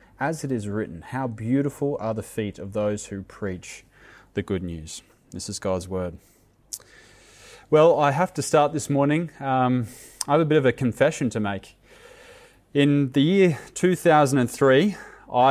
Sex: male